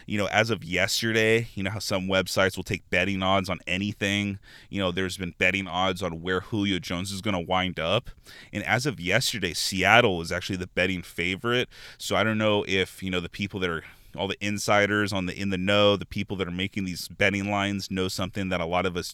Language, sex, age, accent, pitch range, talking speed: English, male, 20-39, American, 90-100 Hz, 235 wpm